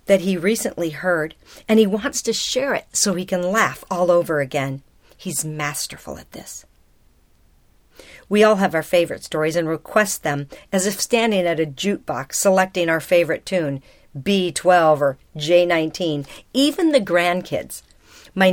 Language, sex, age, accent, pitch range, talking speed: English, female, 50-69, American, 165-220 Hz, 150 wpm